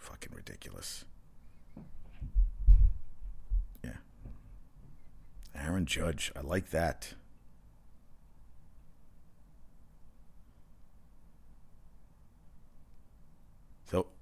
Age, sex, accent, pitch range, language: 50-69, male, American, 80-110 Hz, English